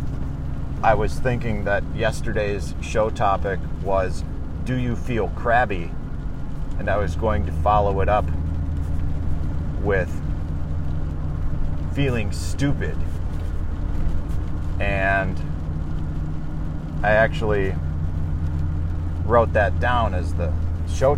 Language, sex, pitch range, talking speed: English, male, 80-100 Hz, 90 wpm